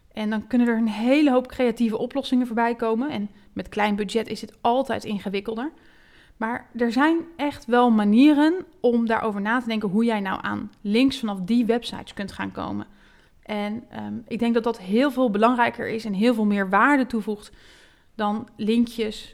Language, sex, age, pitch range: Dutch, female, 30-49, 210-245 Hz